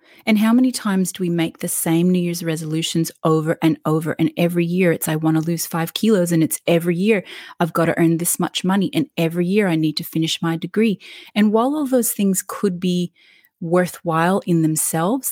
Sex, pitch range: female, 170-205 Hz